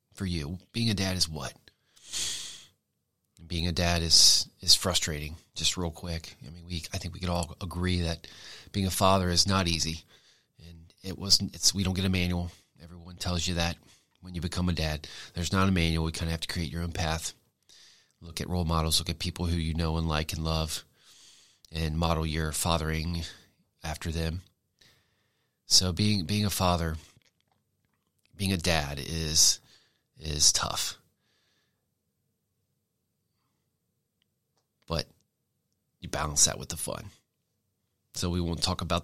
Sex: male